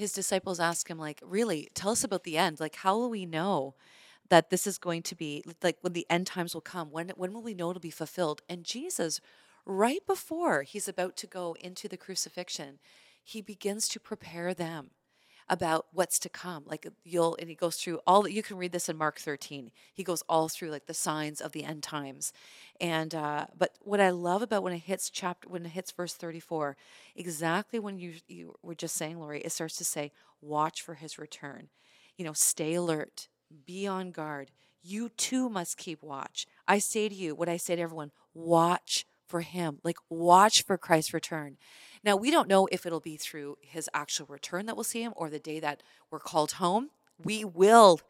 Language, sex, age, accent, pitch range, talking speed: English, female, 30-49, American, 160-200 Hz, 210 wpm